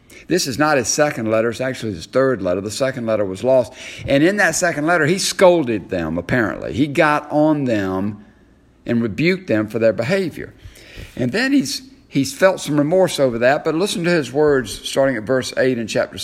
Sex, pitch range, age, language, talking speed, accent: male, 115-165 Hz, 50-69, English, 205 wpm, American